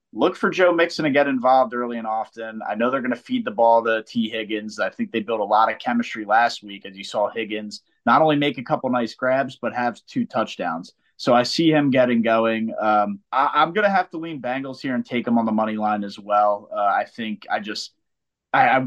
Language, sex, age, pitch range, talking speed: English, male, 30-49, 105-155 Hz, 240 wpm